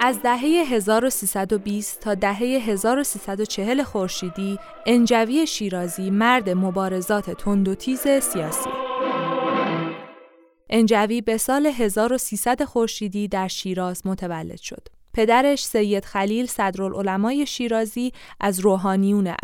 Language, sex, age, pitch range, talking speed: Persian, female, 20-39, 190-245 Hz, 95 wpm